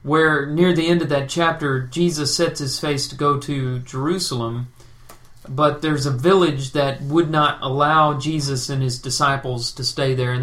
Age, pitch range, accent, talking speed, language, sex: 40-59, 125-155 Hz, American, 180 wpm, English, male